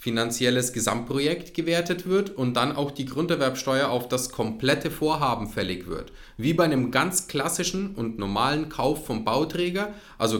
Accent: German